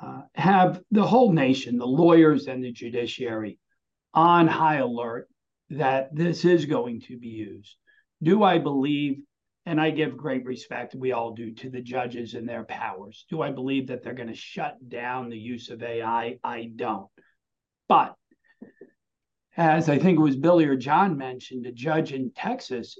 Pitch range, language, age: 125-175 Hz, English, 50-69